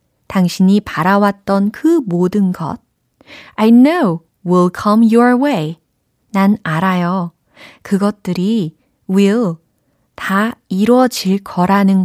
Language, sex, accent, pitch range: Korean, female, native, 165-220 Hz